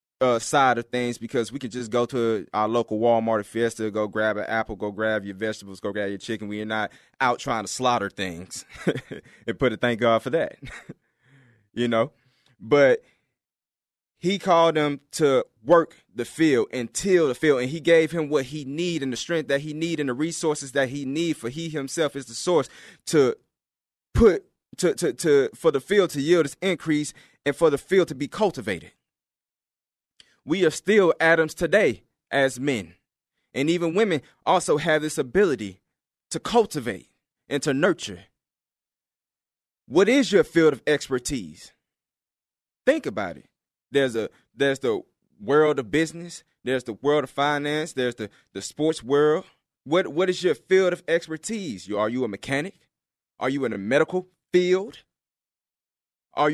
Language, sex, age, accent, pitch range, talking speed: English, male, 20-39, American, 120-170 Hz, 175 wpm